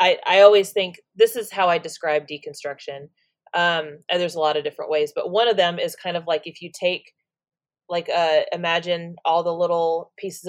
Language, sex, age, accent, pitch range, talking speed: English, female, 30-49, American, 155-200 Hz, 205 wpm